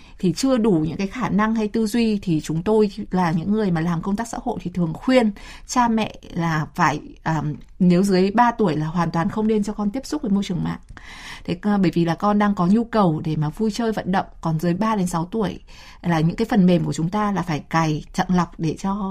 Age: 20-39